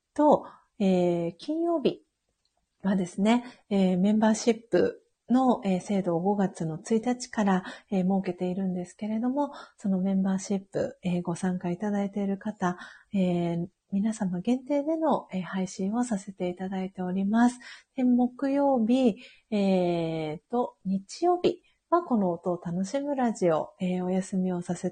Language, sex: Japanese, female